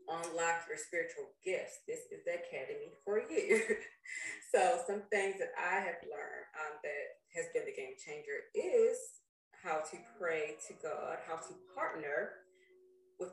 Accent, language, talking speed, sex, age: American, English, 155 wpm, female, 30-49